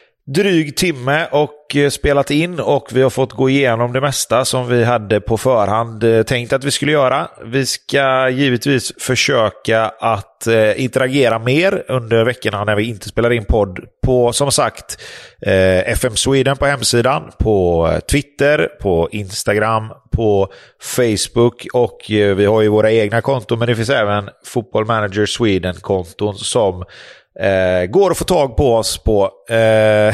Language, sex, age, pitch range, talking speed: English, male, 30-49, 110-135 Hz, 150 wpm